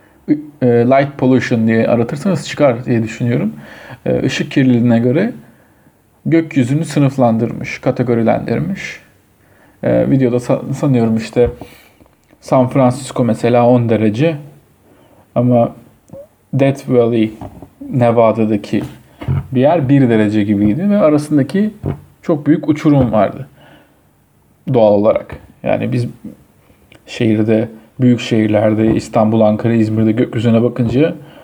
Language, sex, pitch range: Turkish, male, 115-135 Hz